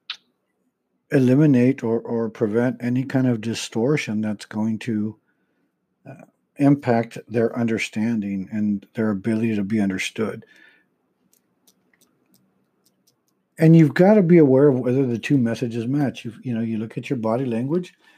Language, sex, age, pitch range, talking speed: English, male, 60-79, 115-150 Hz, 135 wpm